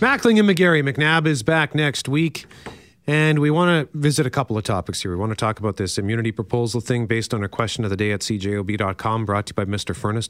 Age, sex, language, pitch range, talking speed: 40-59, male, English, 105-140 Hz, 245 wpm